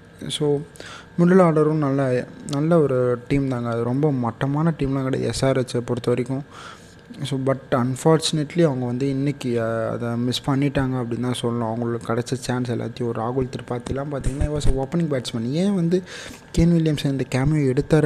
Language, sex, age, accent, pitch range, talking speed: Tamil, male, 20-39, native, 125-145 Hz, 155 wpm